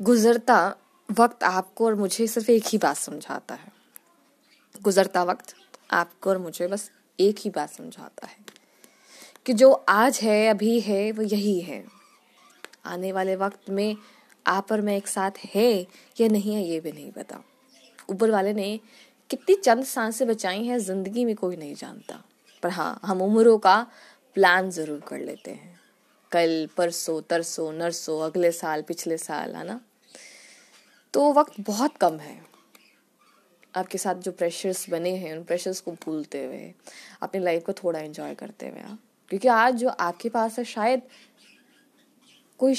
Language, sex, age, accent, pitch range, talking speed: Hindi, female, 20-39, native, 175-235 Hz, 155 wpm